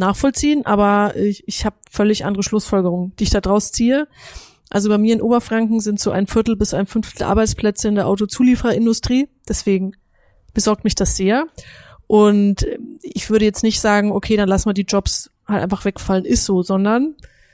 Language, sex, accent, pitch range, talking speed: German, female, German, 200-225 Hz, 180 wpm